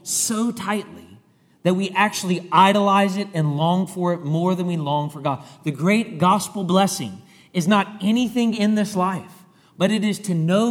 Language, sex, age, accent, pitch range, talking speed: English, male, 40-59, American, 165-215 Hz, 180 wpm